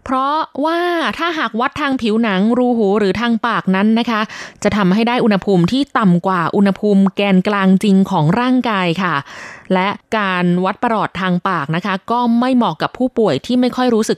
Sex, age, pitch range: female, 20-39, 180-235 Hz